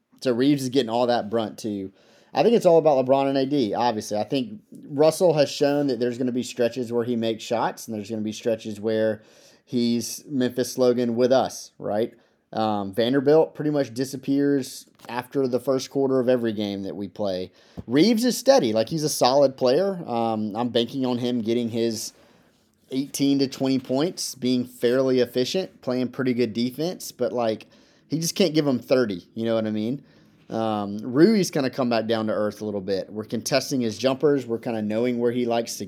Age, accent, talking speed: 30-49, American, 205 wpm